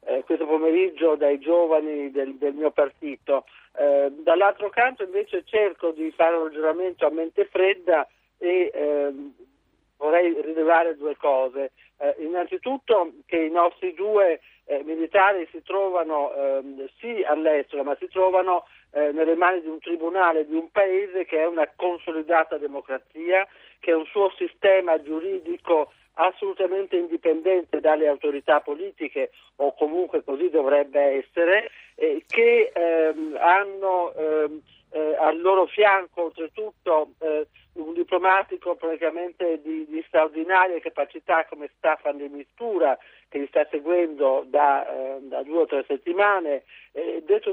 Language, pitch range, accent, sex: Italian, 155-190 Hz, native, male